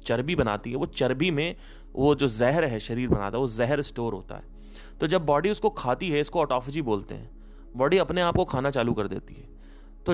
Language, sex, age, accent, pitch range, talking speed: Hindi, male, 30-49, native, 110-160 Hz, 225 wpm